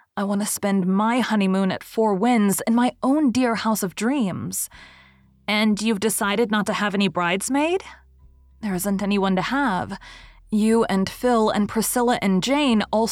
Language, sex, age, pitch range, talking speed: English, female, 20-39, 190-235 Hz, 170 wpm